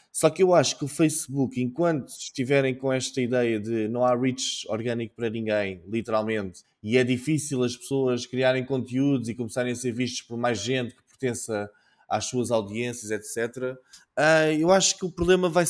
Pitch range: 125-150 Hz